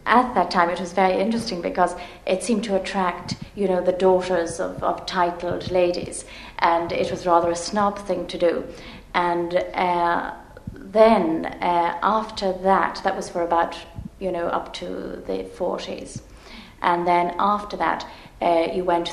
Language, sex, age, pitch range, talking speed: English, female, 30-49, 170-185 Hz, 165 wpm